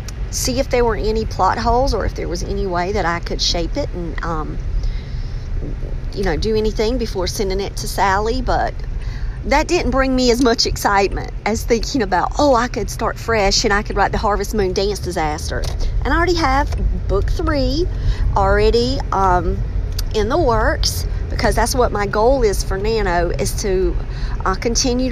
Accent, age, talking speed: American, 40-59, 185 wpm